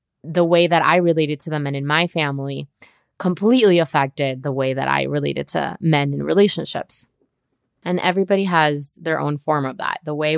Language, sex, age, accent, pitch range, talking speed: English, female, 20-39, American, 145-180 Hz, 185 wpm